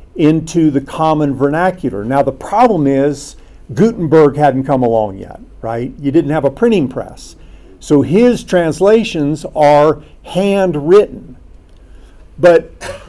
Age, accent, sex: 50-69, American, male